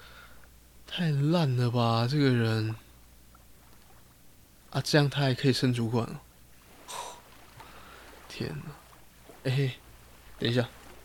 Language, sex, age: Chinese, male, 20-39